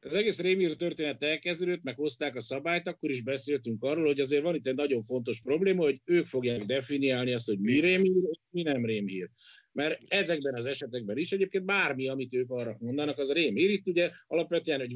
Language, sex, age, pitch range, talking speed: Hungarian, male, 50-69, 130-180 Hz, 195 wpm